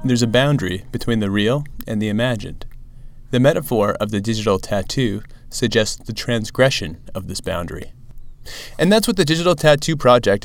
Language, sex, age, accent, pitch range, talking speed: English, male, 30-49, American, 105-135 Hz, 160 wpm